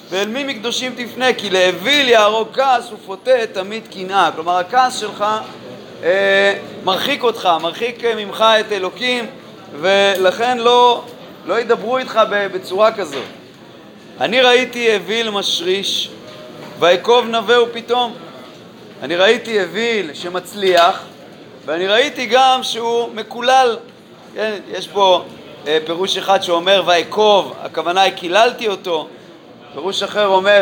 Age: 30-49